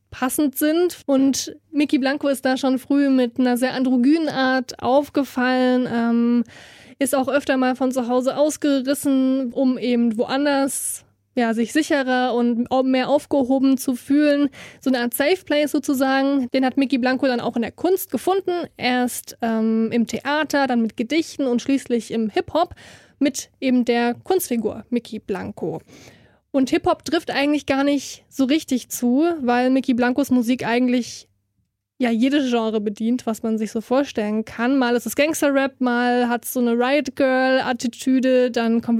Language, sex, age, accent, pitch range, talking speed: German, female, 20-39, German, 240-285 Hz, 160 wpm